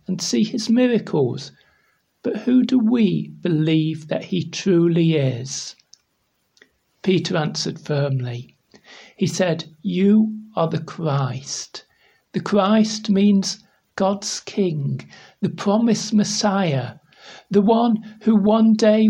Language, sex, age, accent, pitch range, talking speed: English, male, 60-79, British, 155-210 Hz, 110 wpm